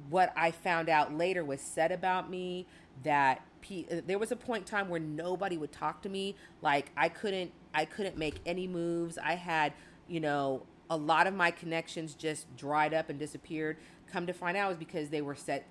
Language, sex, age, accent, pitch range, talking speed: English, female, 40-59, American, 155-185 Hz, 210 wpm